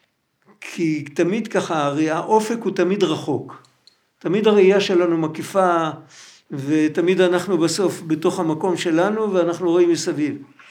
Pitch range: 175-230 Hz